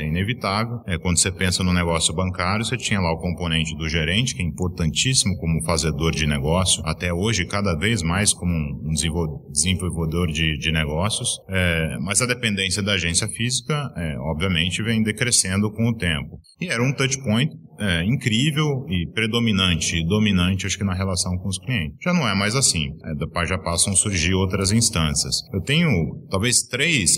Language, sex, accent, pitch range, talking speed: Portuguese, male, Brazilian, 80-115 Hz, 185 wpm